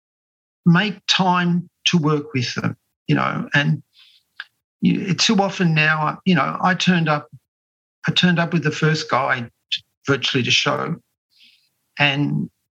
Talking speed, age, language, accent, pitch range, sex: 145 wpm, 50-69, English, Australian, 135-170 Hz, male